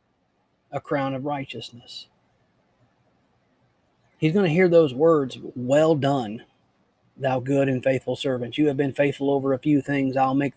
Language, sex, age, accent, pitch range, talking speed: English, male, 30-49, American, 130-160 Hz, 155 wpm